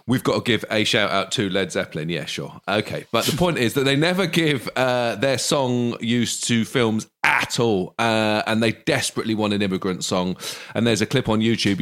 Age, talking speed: 30-49, 220 wpm